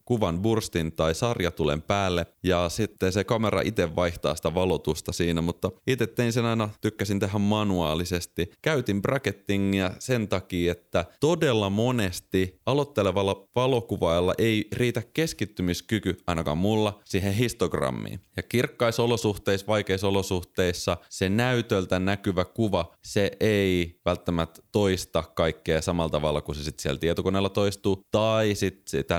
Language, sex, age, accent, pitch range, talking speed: Finnish, male, 30-49, native, 85-105 Hz, 125 wpm